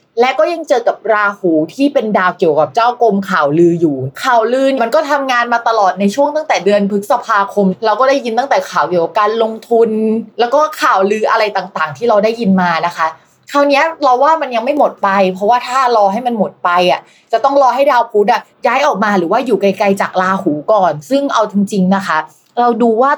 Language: Thai